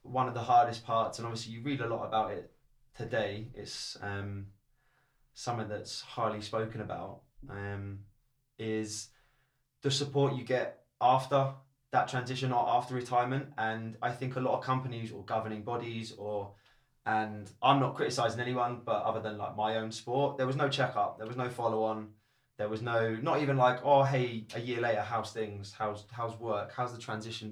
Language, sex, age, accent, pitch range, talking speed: English, male, 20-39, British, 110-130 Hz, 185 wpm